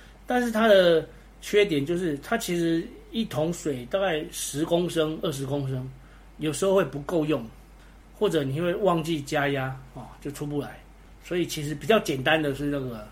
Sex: male